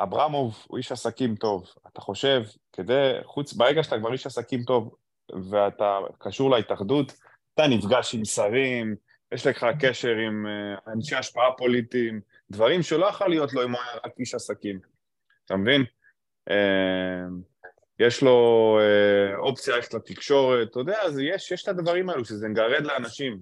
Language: Hebrew